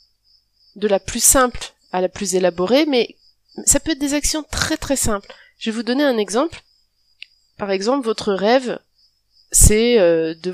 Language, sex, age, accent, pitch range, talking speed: French, female, 30-49, French, 170-230 Hz, 170 wpm